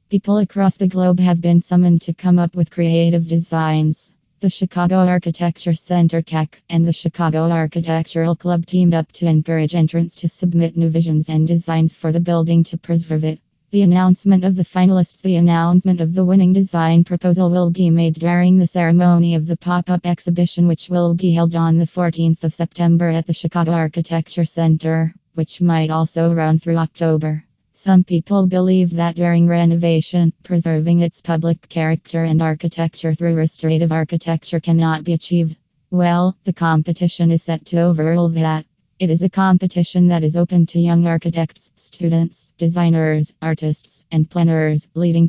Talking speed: 165 wpm